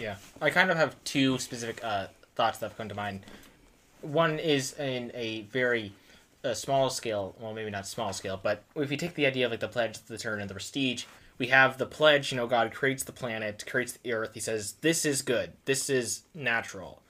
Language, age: English, 20-39